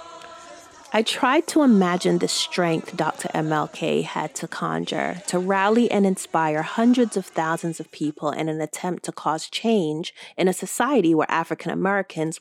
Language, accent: English, American